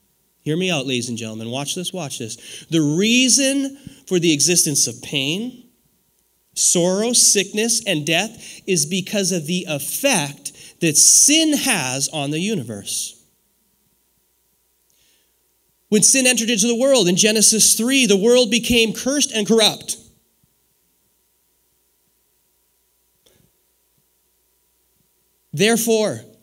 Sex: male